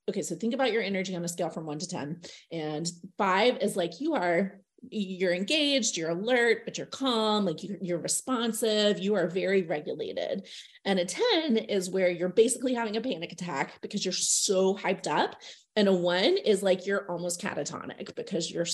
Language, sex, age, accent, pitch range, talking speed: English, female, 30-49, American, 180-230 Hz, 190 wpm